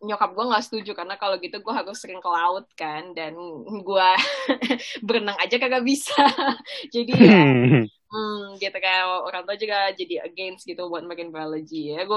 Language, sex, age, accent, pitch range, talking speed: Indonesian, female, 20-39, native, 195-250 Hz, 165 wpm